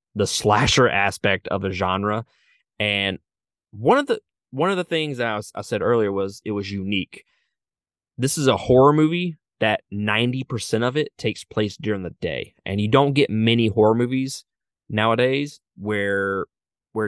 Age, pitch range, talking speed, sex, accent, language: 20-39, 100-125 Hz, 165 wpm, male, American, English